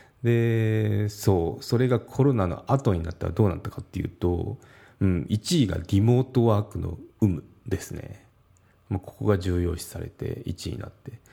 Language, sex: Japanese, male